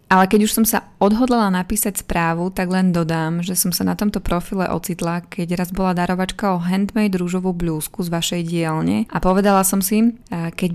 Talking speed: 190 wpm